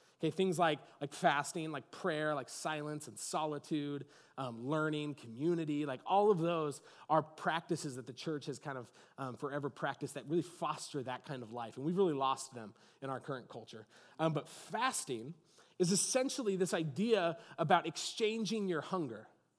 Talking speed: 170 wpm